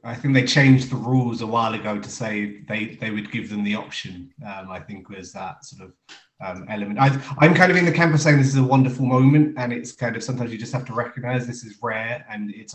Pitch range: 105-130 Hz